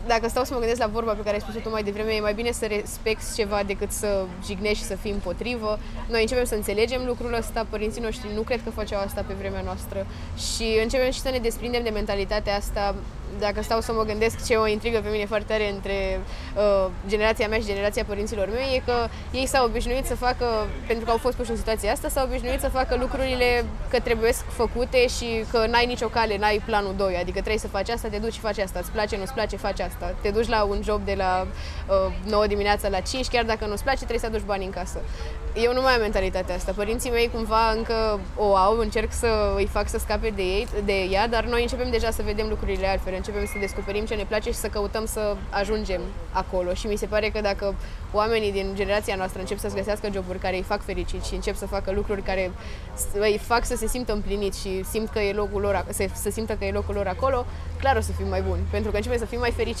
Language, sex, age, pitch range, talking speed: Romanian, female, 20-39, 200-230 Hz, 245 wpm